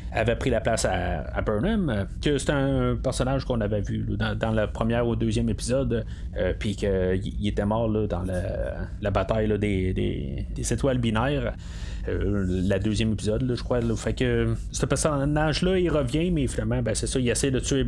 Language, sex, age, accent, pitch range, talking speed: French, male, 30-49, Canadian, 105-135 Hz, 205 wpm